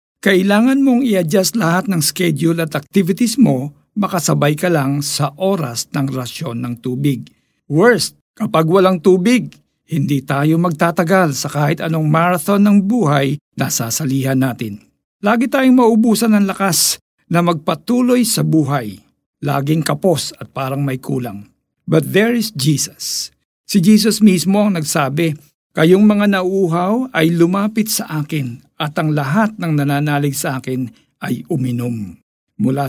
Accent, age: native, 50-69